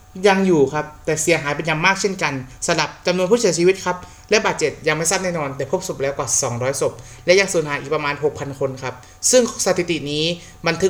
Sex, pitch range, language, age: male, 135-185 Hz, Thai, 30-49